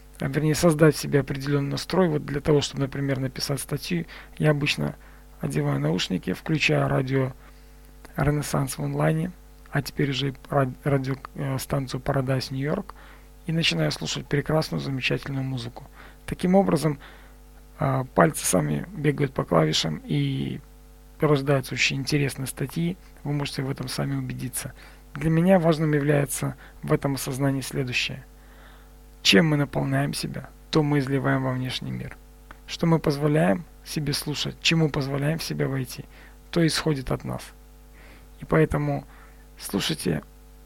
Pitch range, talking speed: 135-155 Hz, 130 wpm